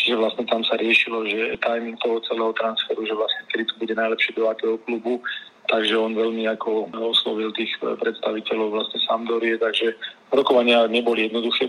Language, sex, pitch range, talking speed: Slovak, male, 110-115 Hz, 160 wpm